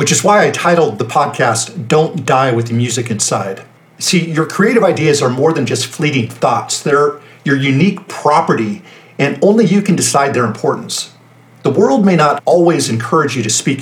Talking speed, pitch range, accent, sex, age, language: 185 wpm, 130-175 Hz, American, male, 50-69, English